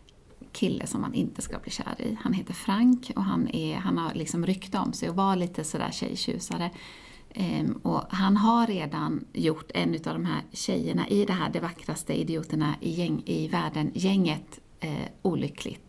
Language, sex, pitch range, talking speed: Swedish, female, 185-235 Hz, 185 wpm